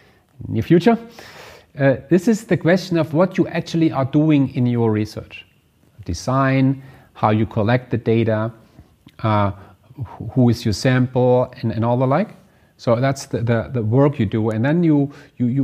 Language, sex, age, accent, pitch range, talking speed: English, male, 40-59, German, 115-160 Hz, 170 wpm